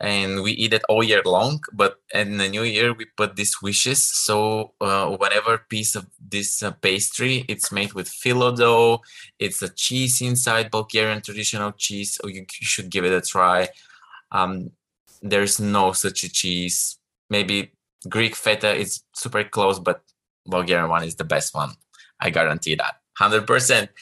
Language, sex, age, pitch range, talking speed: Portuguese, male, 20-39, 100-115 Hz, 170 wpm